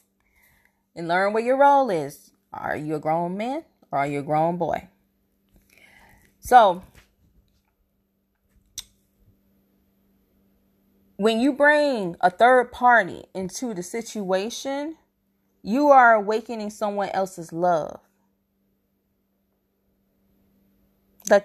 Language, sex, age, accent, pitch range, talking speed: English, female, 20-39, American, 155-230 Hz, 95 wpm